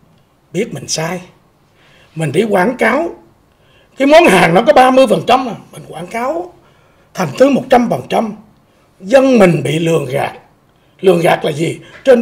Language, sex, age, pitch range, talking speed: Vietnamese, male, 60-79, 185-260 Hz, 150 wpm